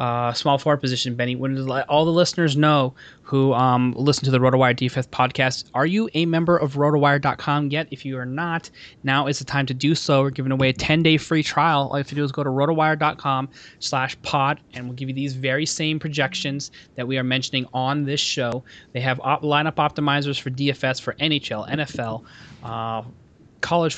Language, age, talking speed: English, 20-39, 205 wpm